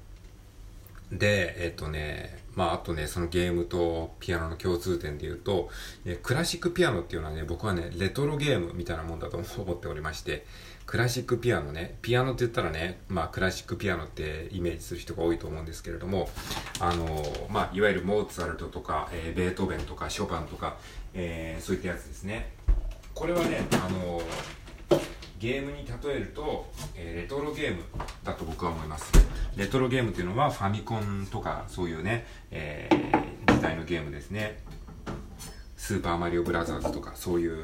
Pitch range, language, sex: 85-120 Hz, Japanese, male